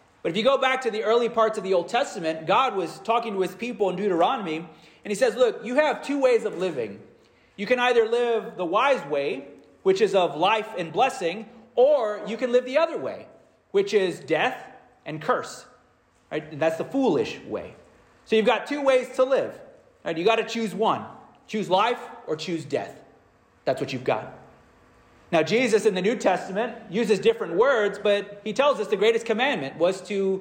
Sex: male